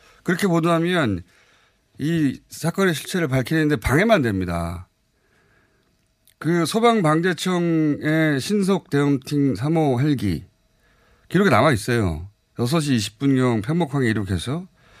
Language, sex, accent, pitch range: Korean, male, native, 110-165 Hz